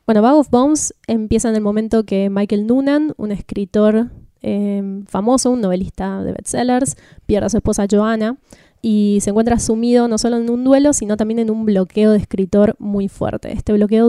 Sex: female